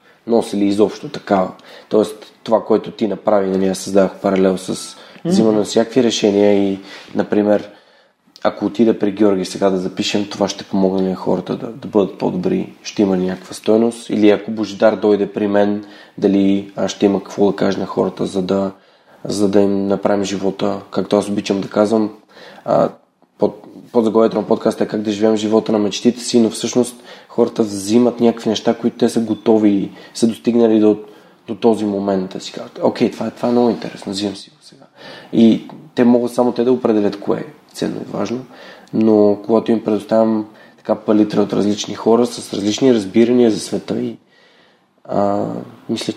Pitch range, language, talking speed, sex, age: 100-115 Hz, Bulgarian, 180 wpm, male, 20-39